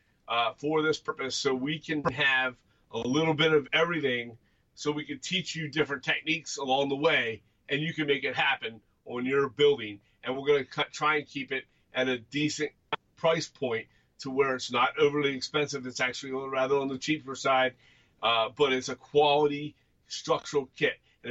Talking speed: 190 wpm